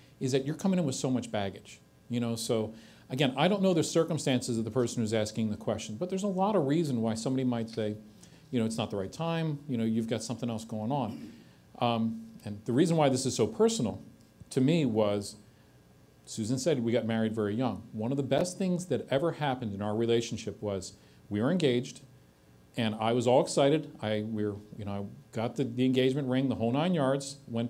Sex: male